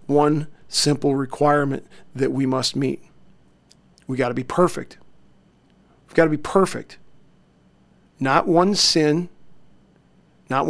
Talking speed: 120 wpm